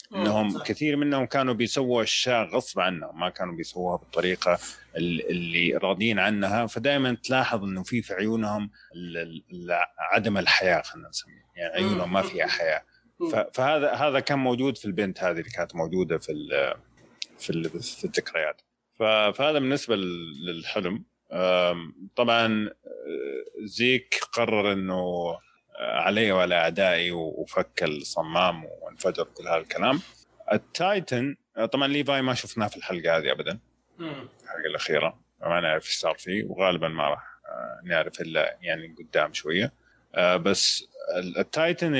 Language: Arabic